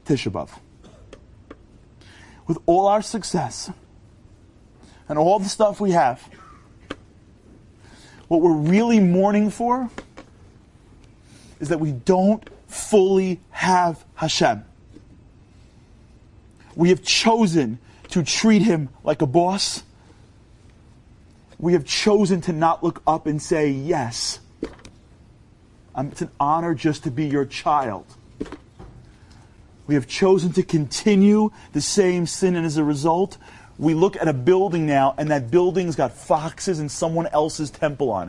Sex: male